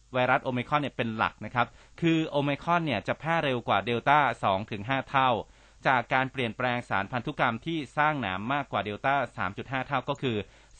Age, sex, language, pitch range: 30-49, male, Thai, 115-145 Hz